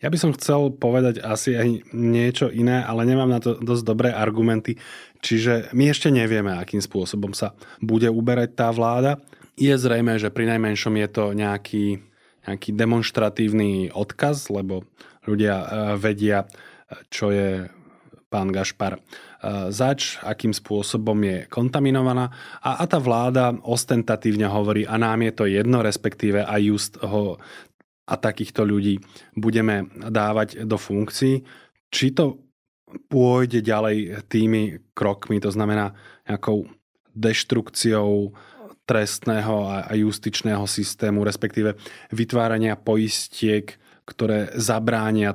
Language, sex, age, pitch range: Slovak, male, 20-39, 105-115 Hz